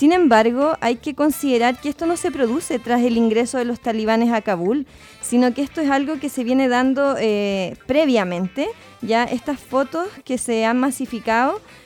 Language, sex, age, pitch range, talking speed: Spanish, female, 20-39, 215-275 Hz, 180 wpm